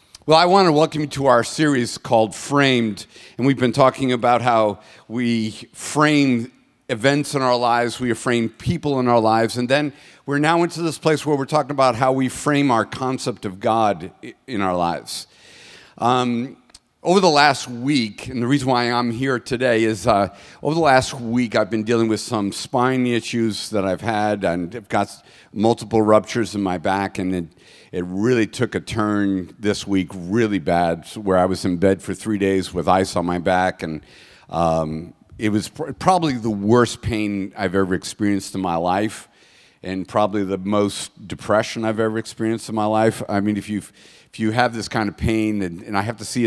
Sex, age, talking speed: male, 50-69, 200 wpm